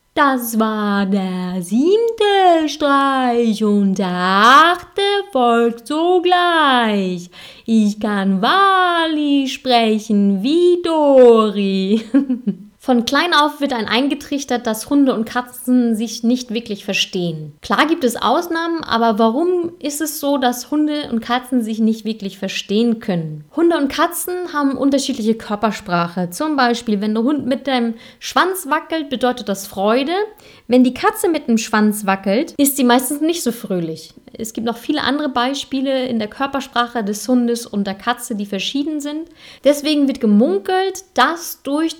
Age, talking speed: 30-49, 145 wpm